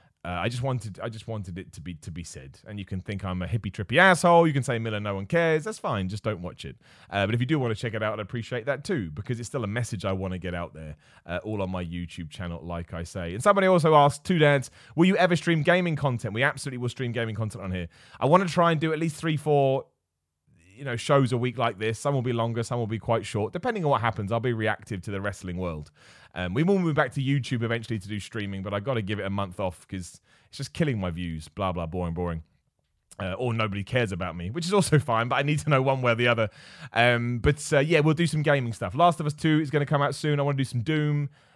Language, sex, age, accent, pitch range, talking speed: English, male, 30-49, British, 100-150 Hz, 290 wpm